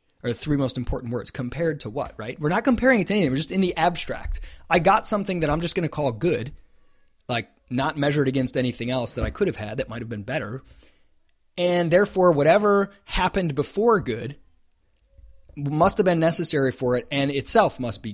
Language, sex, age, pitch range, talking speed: English, male, 20-39, 120-175 Hz, 200 wpm